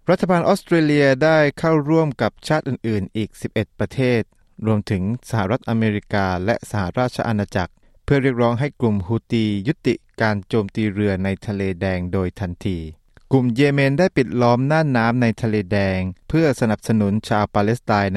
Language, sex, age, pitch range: Thai, male, 20-39, 100-125 Hz